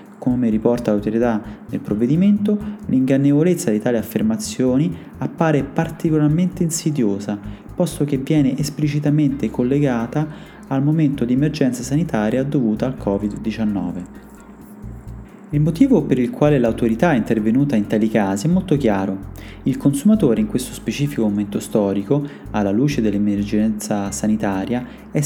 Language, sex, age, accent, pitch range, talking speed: Italian, male, 30-49, native, 110-160 Hz, 120 wpm